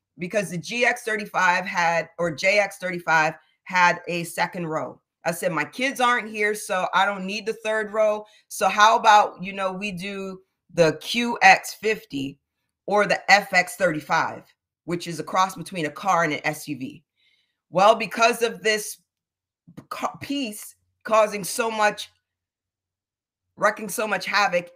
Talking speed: 140 wpm